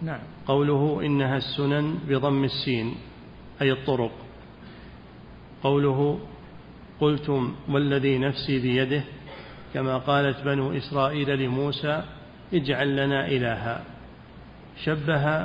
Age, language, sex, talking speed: 40-59, Arabic, male, 85 wpm